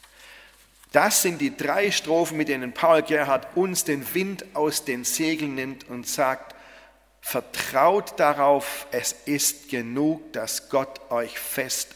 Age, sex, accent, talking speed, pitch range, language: 40-59, male, German, 135 wpm, 120-160 Hz, German